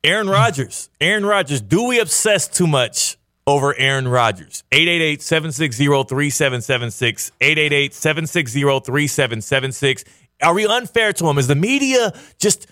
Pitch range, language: 115-145 Hz, English